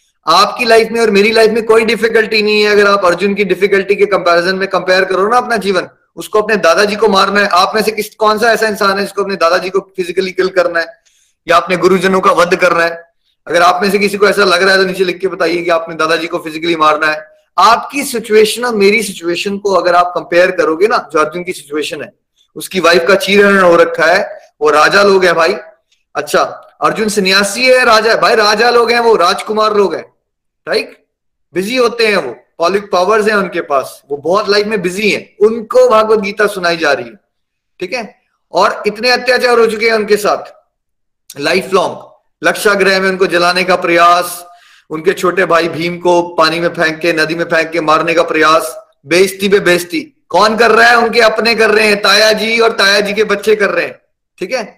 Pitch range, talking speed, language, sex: 175-220 Hz, 200 wpm, Hindi, male